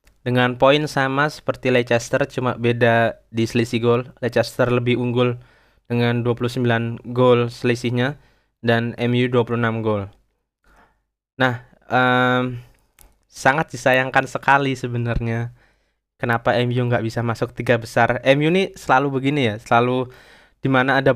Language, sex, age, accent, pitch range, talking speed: Indonesian, male, 20-39, native, 120-135 Hz, 120 wpm